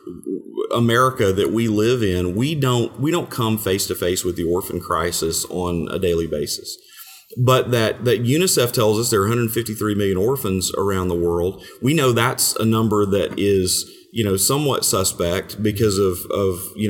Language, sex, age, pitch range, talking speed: English, male, 30-49, 95-130 Hz, 180 wpm